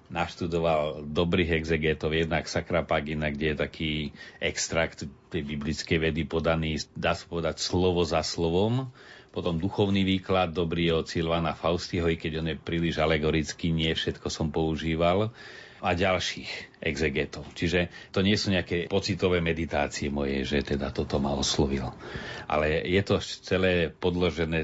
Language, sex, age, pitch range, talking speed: Slovak, male, 40-59, 75-90 Hz, 140 wpm